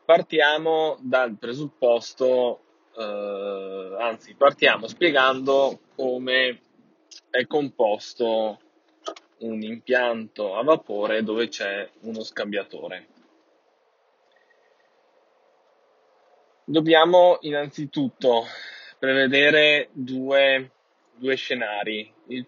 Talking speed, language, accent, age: 65 wpm, Italian, native, 20-39